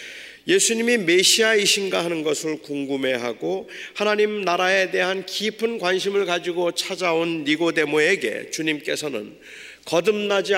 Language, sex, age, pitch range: Korean, male, 40-59, 180-230 Hz